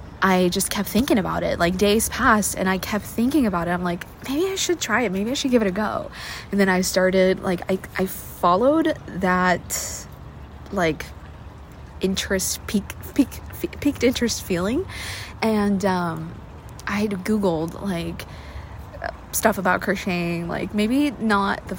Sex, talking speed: female, 160 wpm